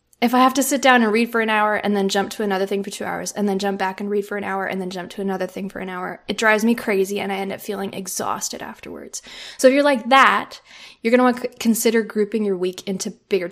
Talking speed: 290 wpm